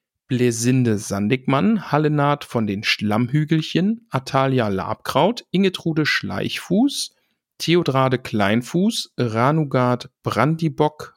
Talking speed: 75 wpm